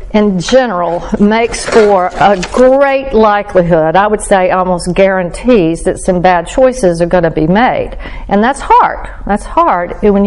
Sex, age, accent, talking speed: female, 50-69, American, 150 wpm